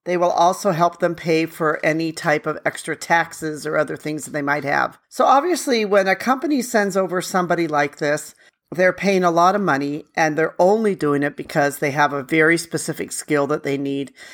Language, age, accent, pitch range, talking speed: English, 40-59, American, 155-185 Hz, 210 wpm